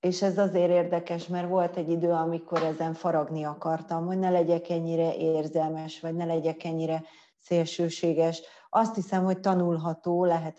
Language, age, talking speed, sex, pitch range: Hungarian, 30-49, 155 wpm, female, 165-180 Hz